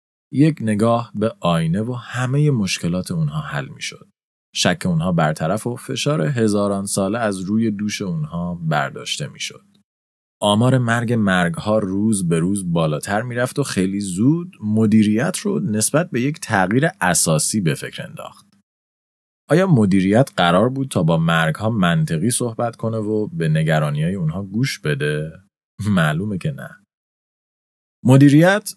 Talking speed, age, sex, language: 140 wpm, 30-49, male, Persian